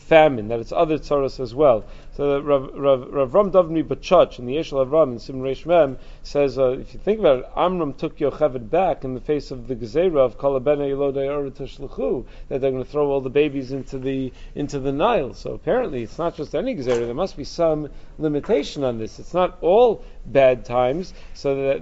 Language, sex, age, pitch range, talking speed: English, male, 40-59, 130-165 Hz, 210 wpm